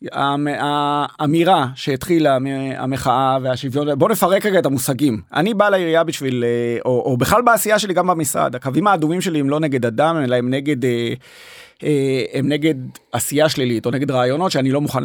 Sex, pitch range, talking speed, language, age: male, 135-165 Hz, 170 wpm, Hebrew, 30-49